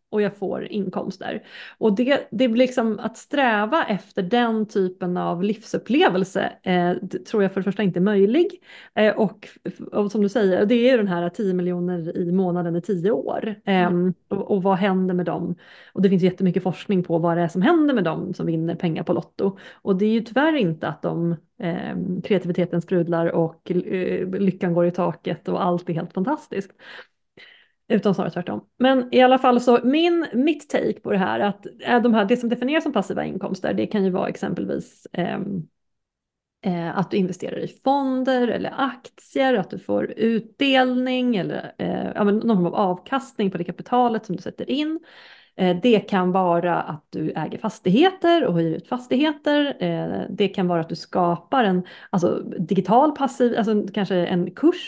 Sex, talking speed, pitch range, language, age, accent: female, 185 wpm, 180-245 Hz, English, 30-49, Swedish